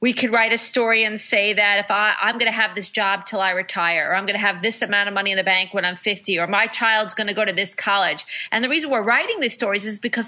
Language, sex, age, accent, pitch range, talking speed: English, female, 40-59, American, 195-235 Hz, 300 wpm